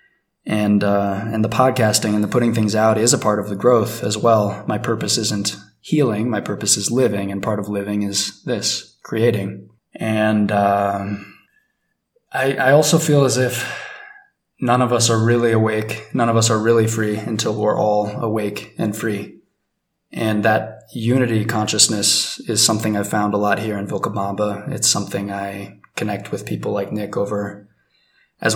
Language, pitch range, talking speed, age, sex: English, 105-120 Hz, 170 wpm, 20-39, male